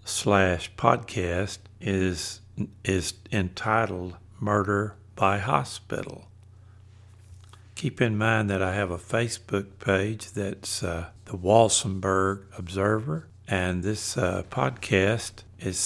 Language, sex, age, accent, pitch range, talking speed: English, male, 60-79, American, 95-110 Hz, 100 wpm